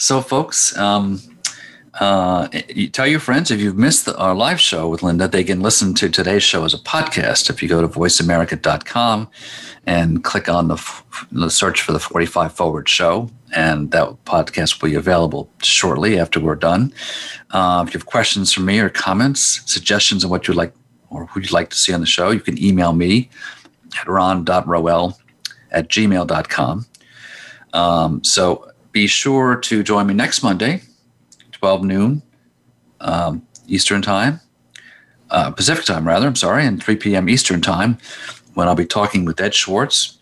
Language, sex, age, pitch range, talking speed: English, male, 50-69, 85-115 Hz, 165 wpm